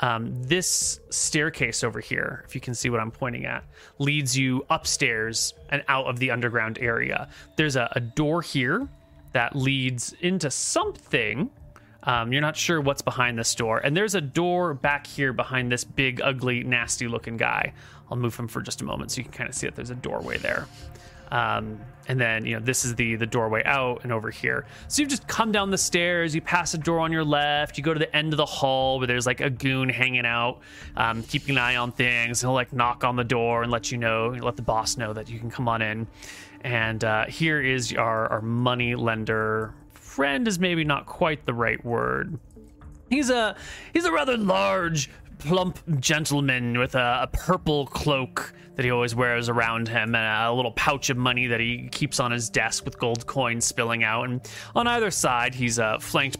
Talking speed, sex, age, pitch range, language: 210 wpm, male, 30-49, 115-145 Hz, English